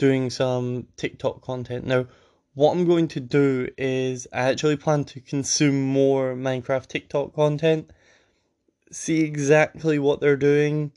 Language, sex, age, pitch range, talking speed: English, male, 10-29, 130-150 Hz, 135 wpm